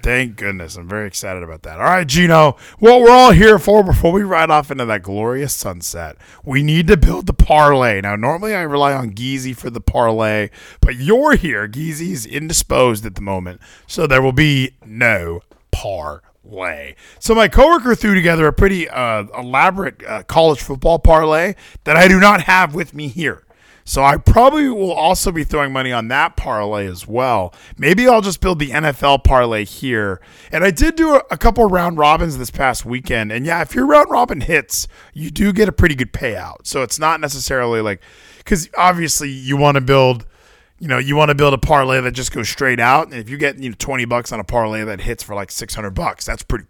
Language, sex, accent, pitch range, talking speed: English, male, American, 115-170 Hz, 210 wpm